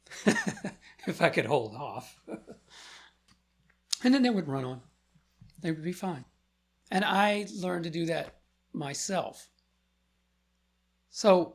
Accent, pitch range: American, 115-165 Hz